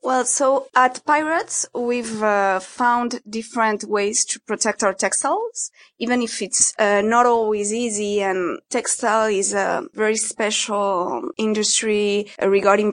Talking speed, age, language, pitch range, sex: 130 wpm, 20-39, English, 190-220 Hz, female